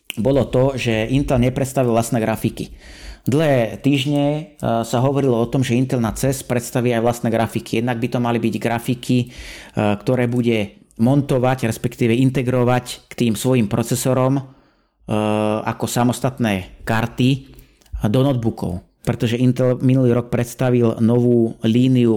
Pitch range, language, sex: 115-130 Hz, Slovak, male